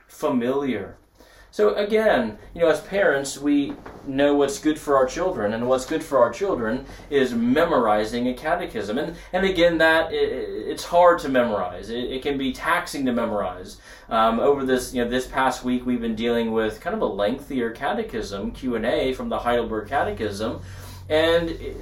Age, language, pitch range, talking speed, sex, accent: 30-49, English, 125-175 Hz, 175 wpm, male, American